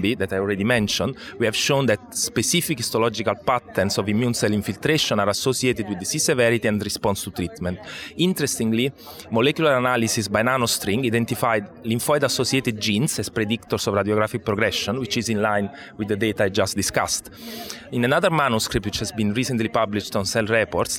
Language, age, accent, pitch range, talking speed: English, 30-49, Italian, 105-120 Hz, 165 wpm